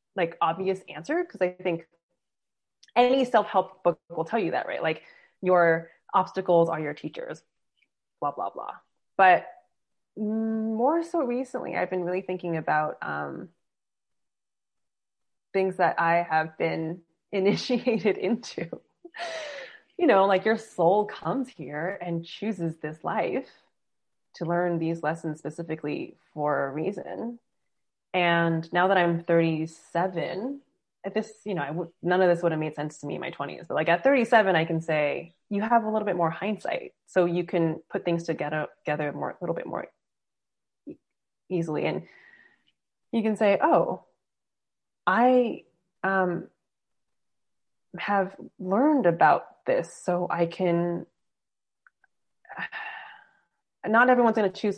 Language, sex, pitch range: English, female, 170-230 Hz